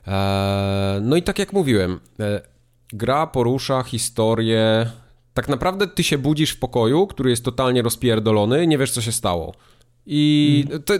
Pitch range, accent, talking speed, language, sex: 110-145 Hz, native, 140 wpm, Polish, male